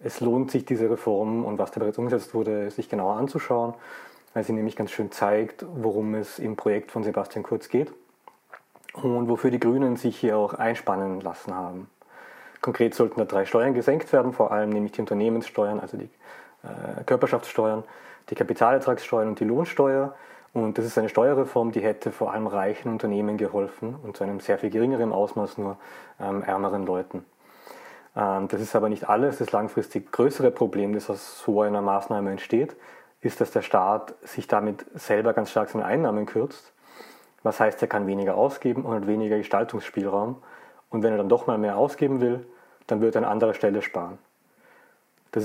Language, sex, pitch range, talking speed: German, male, 105-120 Hz, 180 wpm